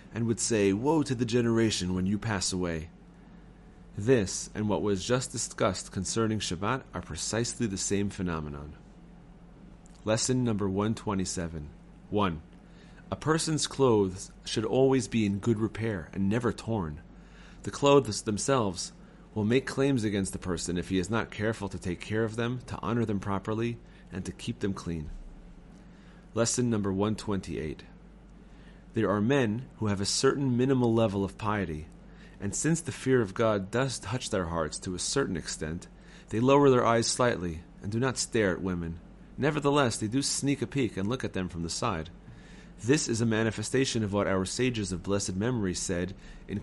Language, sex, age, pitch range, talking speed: English, male, 30-49, 95-120 Hz, 170 wpm